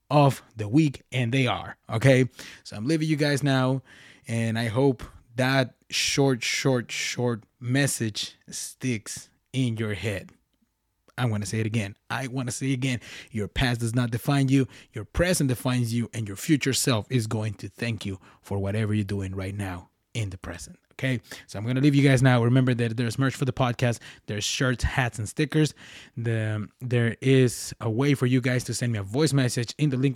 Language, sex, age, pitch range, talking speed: English, male, 20-39, 110-140 Hz, 205 wpm